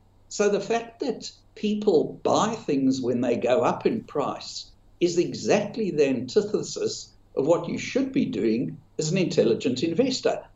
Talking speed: 155 wpm